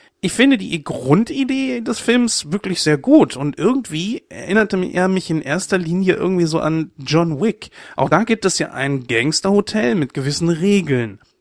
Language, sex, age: German, male, 30-49